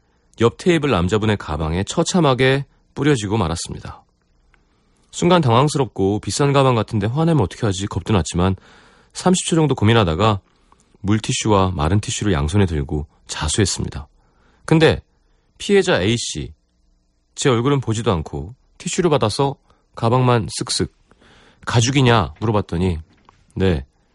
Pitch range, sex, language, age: 85-135 Hz, male, Korean, 40-59